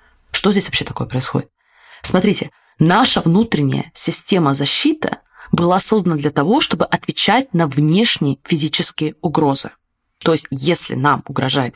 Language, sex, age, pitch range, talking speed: Russian, female, 20-39, 145-205 Hz, 130 wpm